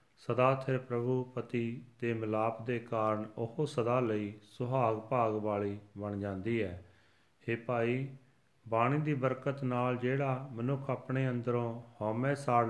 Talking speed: 135 wpm